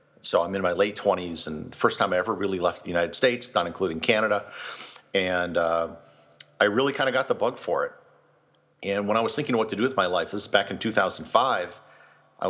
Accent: American